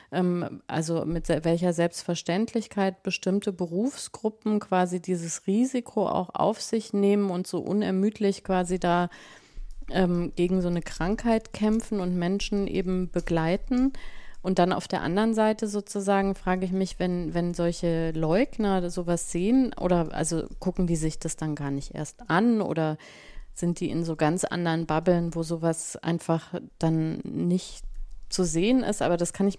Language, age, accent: German, 30-49, German